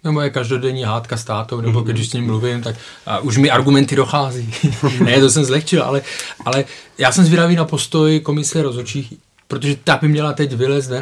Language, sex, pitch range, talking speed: Czech, male, 125-150 Hz, 190 wpm